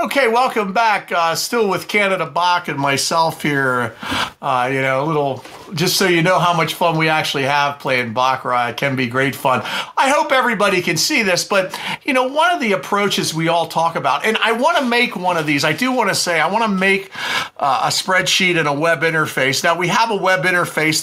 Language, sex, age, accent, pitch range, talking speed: English, male, 40-59, American, 135-190 Hz, 230 wpm